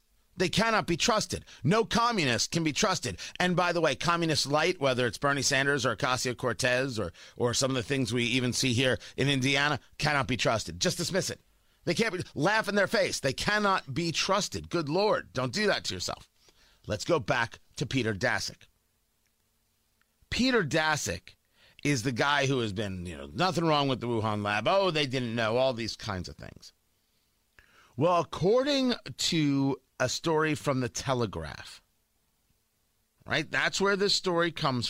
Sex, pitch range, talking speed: male, 120-185 Hz, 175 wpm